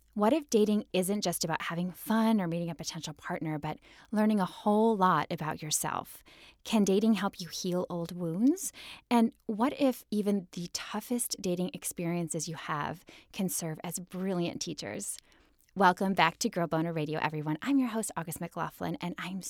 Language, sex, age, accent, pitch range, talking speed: English, female, 10-29, American, 170-225 Hz, 170 wpm